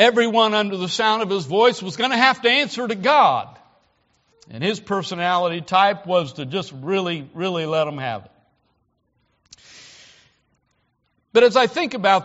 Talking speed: 160 wpm